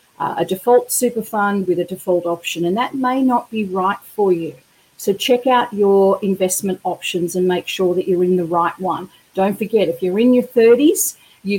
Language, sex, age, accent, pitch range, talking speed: English, female, 40-59, Australian, 180-235 Hz, 205 wpm